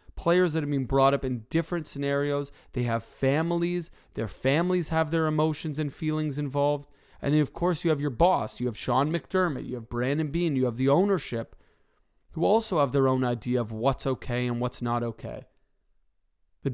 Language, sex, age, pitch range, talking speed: English, male, 30-49, 120-150 Hz, 195 wpm